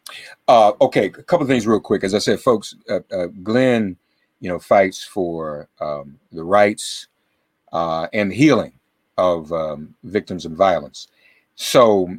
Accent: American